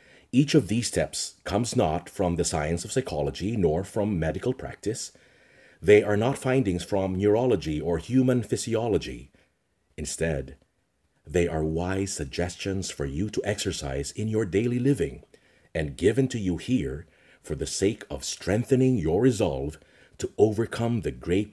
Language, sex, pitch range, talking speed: English, male, 85-130 Hz, 150 wpm